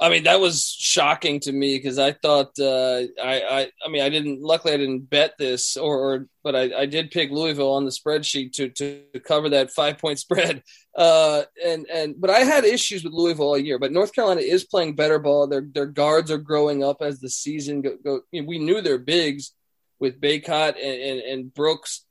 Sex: male